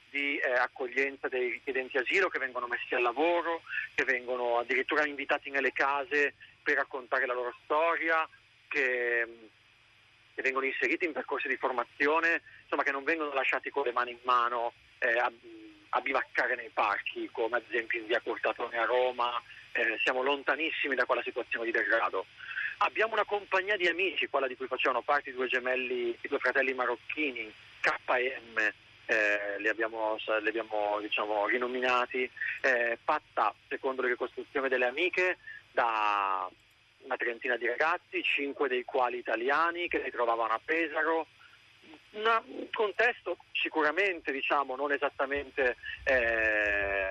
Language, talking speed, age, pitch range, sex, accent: Italian, 145 wpm, 40-59, 115-160 Hz, male, native